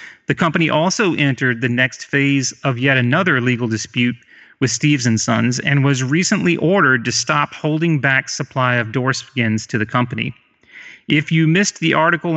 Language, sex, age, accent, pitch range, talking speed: English, male, 30-49, American, 120-150 Hz, 170 wpm